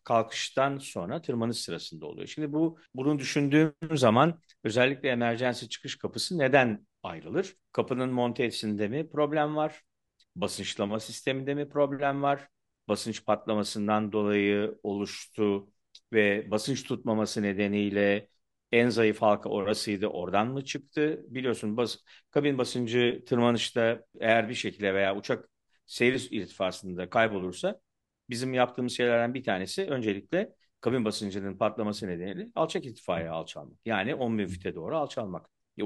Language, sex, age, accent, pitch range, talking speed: Turkish, male, 50-69, native, 110-140 Hz, 120 wpm